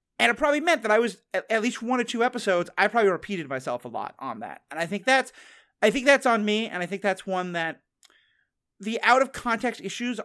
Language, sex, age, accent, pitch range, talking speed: English, male, 30-49, American, 170-235 Hz, 240 wpm